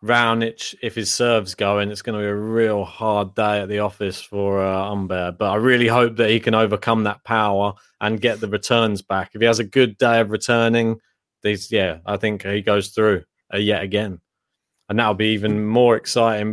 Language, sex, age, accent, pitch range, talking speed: English, male, 20-39, British, 105-120 Hz, 210 wpm